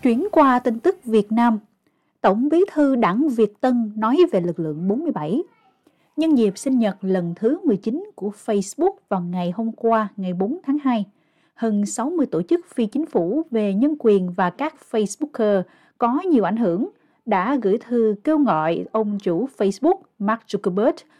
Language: Vietnamese